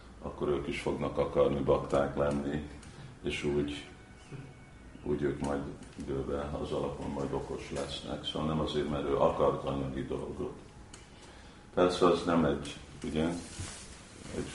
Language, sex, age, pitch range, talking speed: Hungarian, male, 50-69, 70-75 Hz, 130 wpm